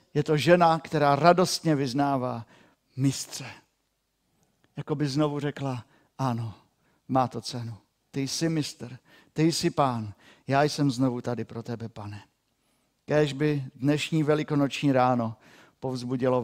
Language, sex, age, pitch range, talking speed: Czech, male, 50-69, 120-150 Hz, 125 wpm